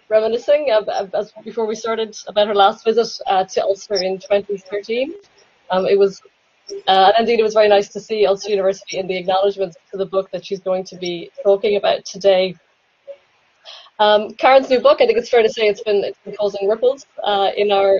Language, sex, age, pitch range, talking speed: English, female, 20-39, 190-215 Hz, 210 wpm